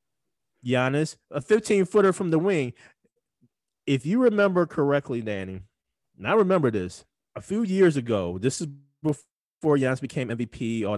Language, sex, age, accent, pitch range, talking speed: English, male, 20-39, American, 110-140 Hz, 140 wpm